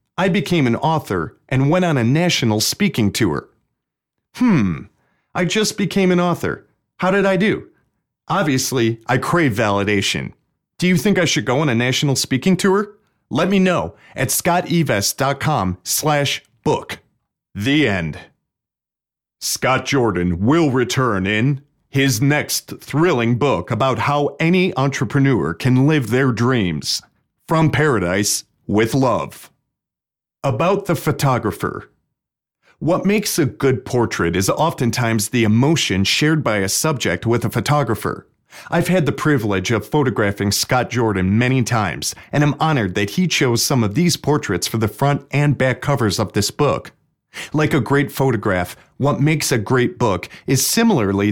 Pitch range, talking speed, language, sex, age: 110-155 Hz, 145 wpm, English, male, 40-59